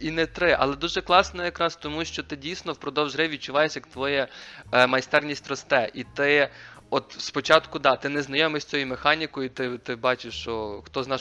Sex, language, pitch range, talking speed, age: male, Russian, 125-150 Hz, 195 wpm, 20-39